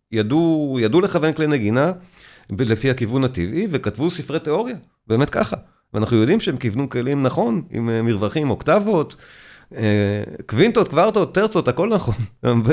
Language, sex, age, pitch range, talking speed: Hebrew, male, 40-59, 115-170 Hz, 135 wpm